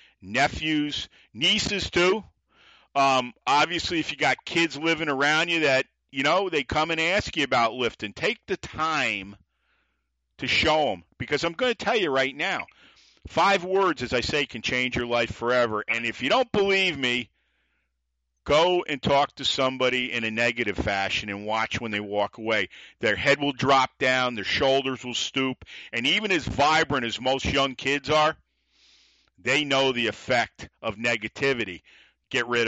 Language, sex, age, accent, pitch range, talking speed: English, male, 50-69, American, 110-150 Hz, 170 wpm